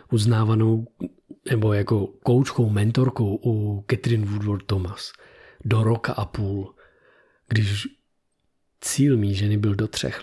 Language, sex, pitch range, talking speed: Czech, male, 105-125 Hz, 115 wpm